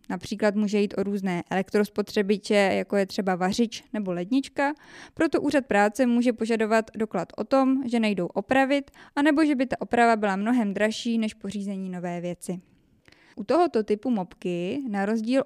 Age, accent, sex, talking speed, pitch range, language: 20-39, native, female, 160 wpm, 200-255 Hz, Czech